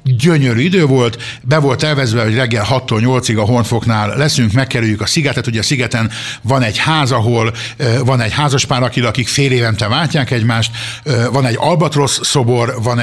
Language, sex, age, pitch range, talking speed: Hungarian, male, 60-79, 115-140 Hz, 165 wpm